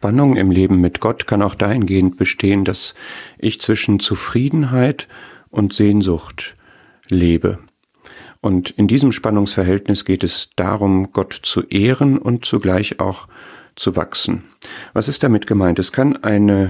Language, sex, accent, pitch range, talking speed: German, male, German, 95-115 Hz, 135 wpm